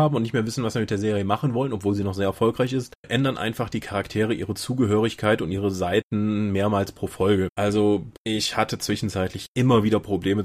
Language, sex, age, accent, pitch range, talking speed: German, male, 30-49, German, 100-125 Hz, 210 wpm